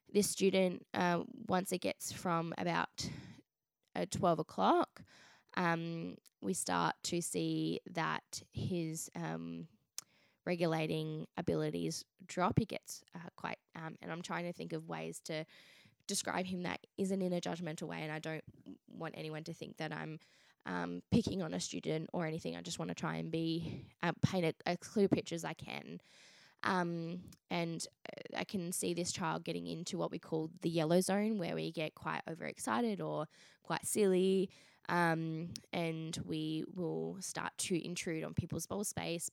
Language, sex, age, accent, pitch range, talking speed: English, female, 10-29, Australian, 150-175 Hz, 165 wpm